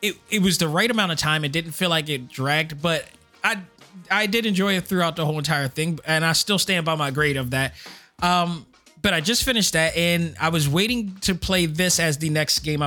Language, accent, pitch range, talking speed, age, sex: English, American, 155-185 Hz, 240 wpm, 20-39, male